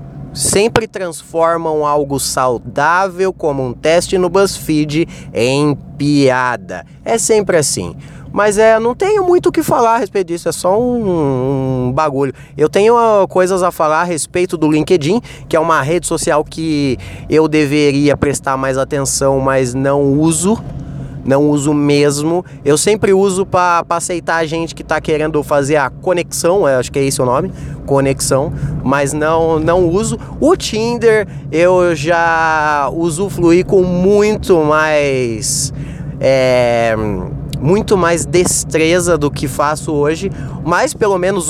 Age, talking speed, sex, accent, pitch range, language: 20-39, 145 wpm, male, Brazilian, 145-180 Hz, Portuguese